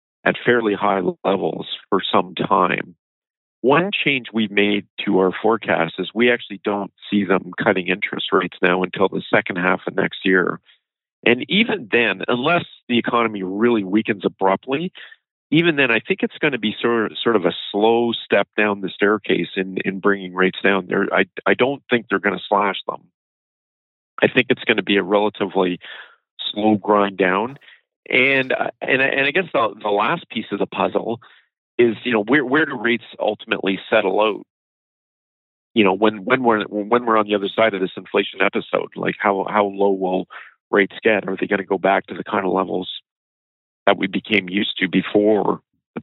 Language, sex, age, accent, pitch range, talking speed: English, male, 50-69, American, 100-120 Hz, 185 wpm